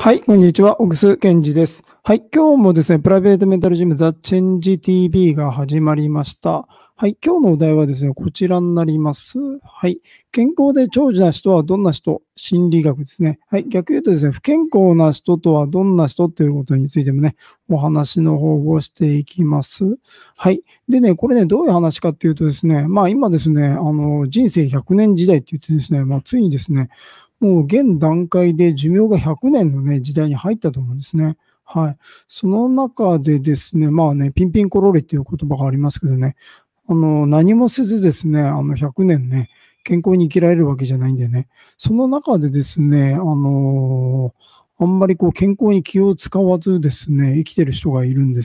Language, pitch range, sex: Japanese, 150-190 Hz, male